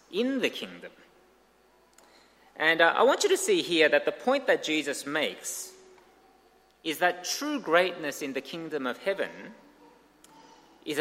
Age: 30-49